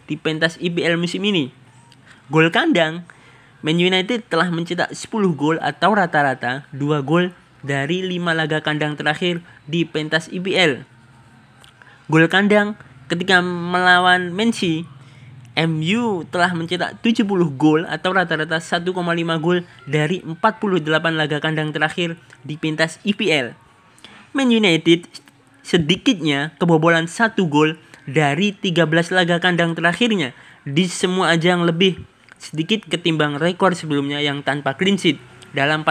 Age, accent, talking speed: 20-39, native, 120 wpm